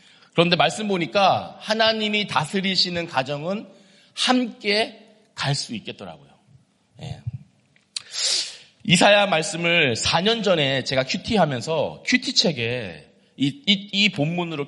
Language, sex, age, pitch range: Korean, male, 40-59, 125-170 Hz